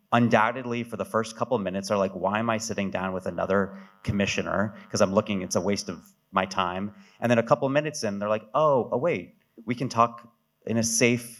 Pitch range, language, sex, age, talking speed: 95-115 Hz, English, male, 30-49, 225 wpm